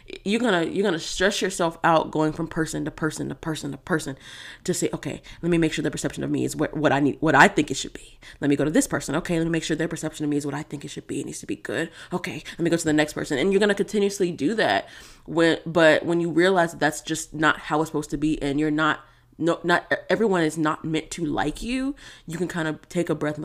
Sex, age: female, 20-39